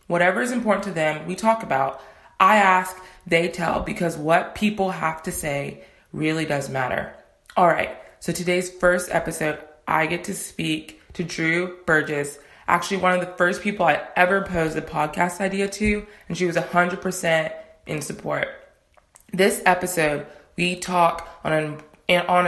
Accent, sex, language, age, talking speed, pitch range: American, female, English, 20-39, 155 wpm, 155-185 Hz